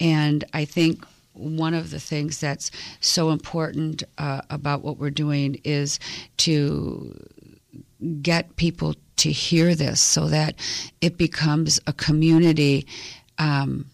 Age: 50-69